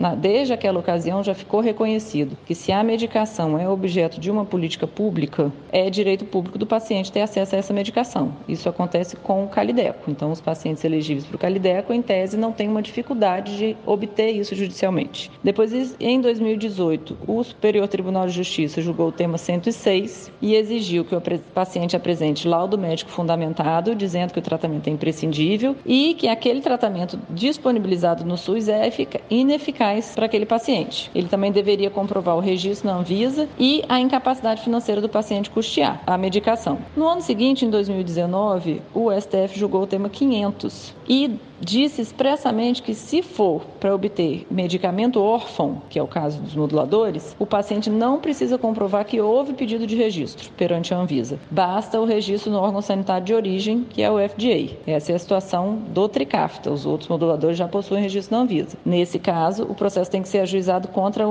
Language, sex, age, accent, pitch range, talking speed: Portuguese, female, 30-49, Brazilian, 175-225 Hz, 175 wpm